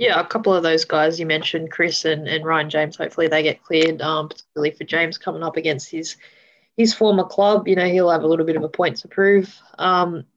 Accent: Australian